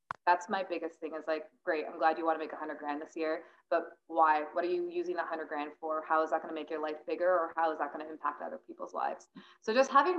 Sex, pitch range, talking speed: female, 155-185 Hz, 290 wpm